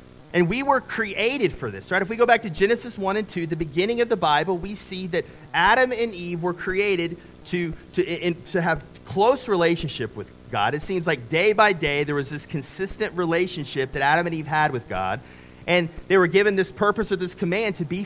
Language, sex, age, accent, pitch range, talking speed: English, male, 30-49, American, 155-205 Hz, 225 wpm